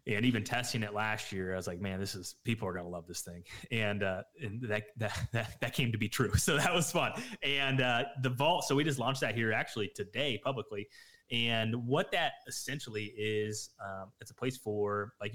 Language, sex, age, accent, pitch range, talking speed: English, male, 20-39, American, 100-120 Hz, 225 wpm